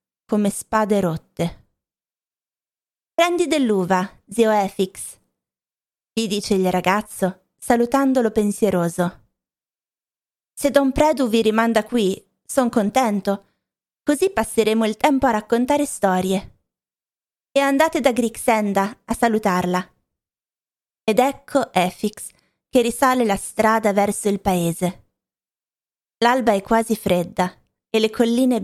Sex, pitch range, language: female, 190-230 Hz, Italian